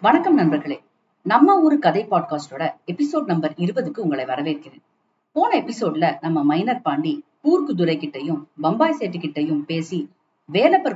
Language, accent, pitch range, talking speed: Tamil, native, 155-220 Hz, 125 wpm